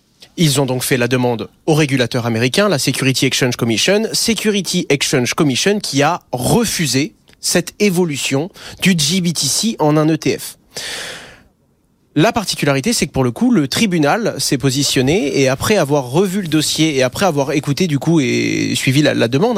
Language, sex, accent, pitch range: French, male, French, 135-185 Hz